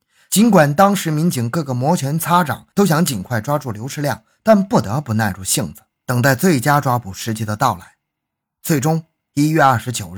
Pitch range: 115-165 Hz